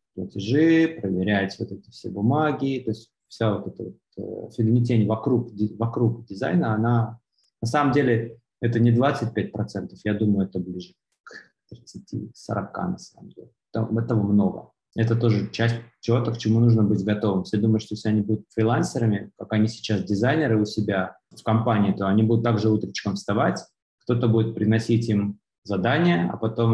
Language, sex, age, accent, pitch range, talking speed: Russian, male, 20-39, native, 105-115 Hz, 155 wpm